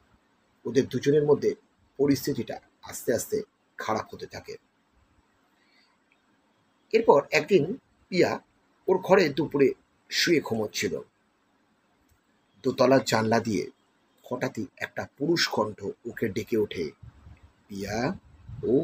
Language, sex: Bengali, male